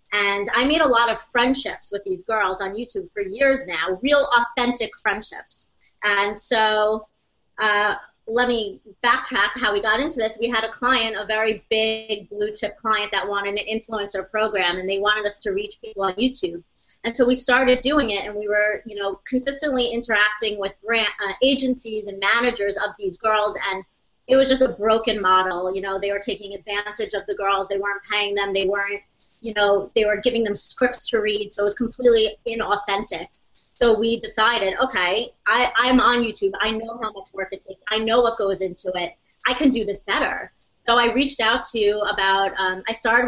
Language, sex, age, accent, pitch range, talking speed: English, female, 30-49, American, 200-235 Hz, 200 wpm